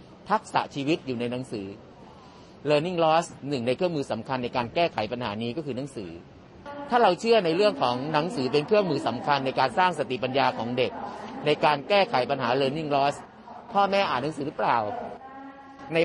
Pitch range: 125-180 Hz